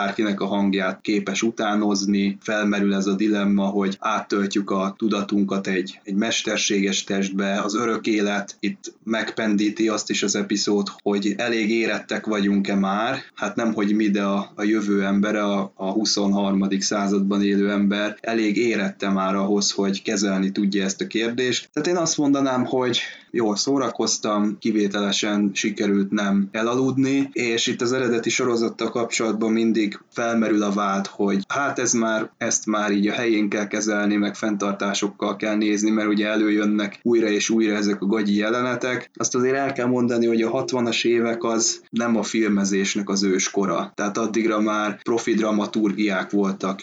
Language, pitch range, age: Hungarian, 100-110 Hz, 20-39